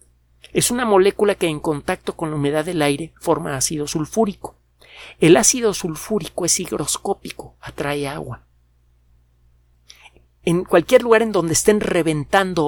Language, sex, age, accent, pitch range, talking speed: Spanish, male, 50-69, Mexican, 140-185 Hz, 135 wpm